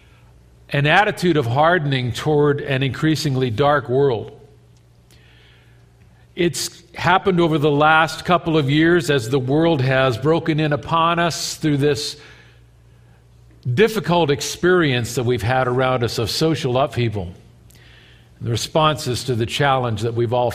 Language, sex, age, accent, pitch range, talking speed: English, male, 50-69, American, 120-160 Hz, 135 wpm